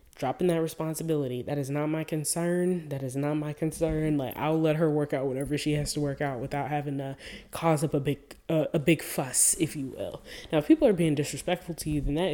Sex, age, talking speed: female, 20-39, 240 wpm